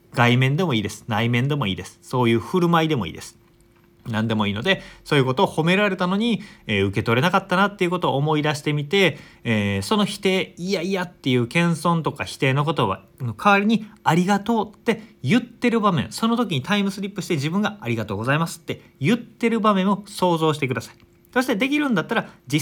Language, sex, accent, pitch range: Japanese, male, native, 115-190 Hz